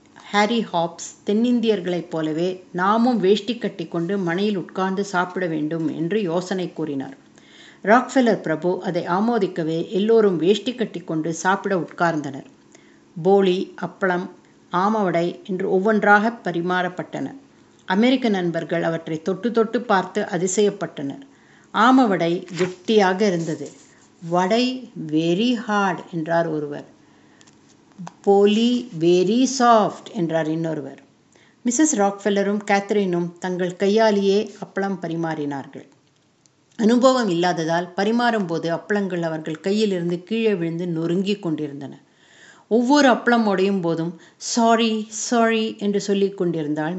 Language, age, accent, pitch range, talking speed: Tamil, 60-79, native, 170-215 Hz, 95 wpm